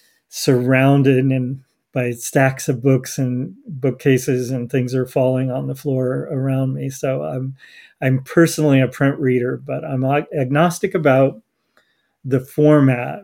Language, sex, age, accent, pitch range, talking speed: English, male, 40-59, American, 130-150 Hz, 140 wpm